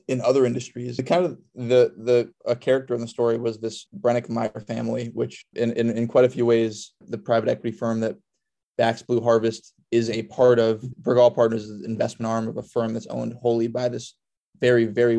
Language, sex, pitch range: English, male, 115-125 Hz